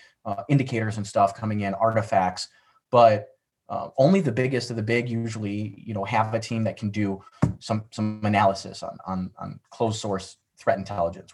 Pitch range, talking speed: 105-140 Hz, 180 wpm